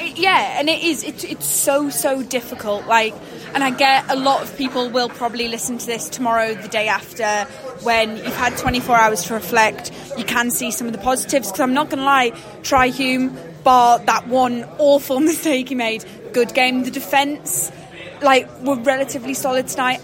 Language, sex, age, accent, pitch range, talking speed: English, female, 20-39, British, 230-270 Hz, 195 wpm